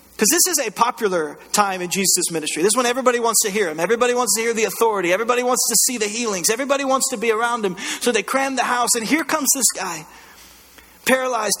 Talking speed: 240 wpm